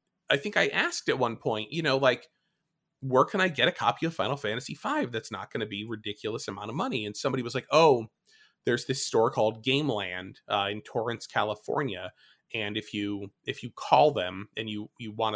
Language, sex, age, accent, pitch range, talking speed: English, male, 20-39, American, 110-140 Hz, 215 wpm